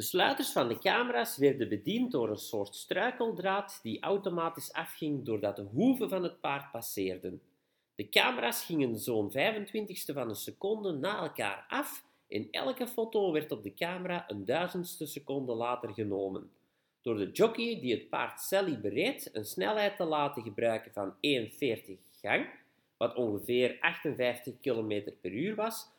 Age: 40-59